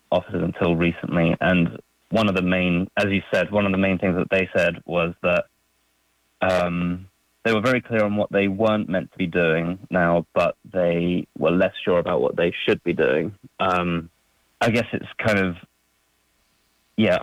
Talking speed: 185 wpm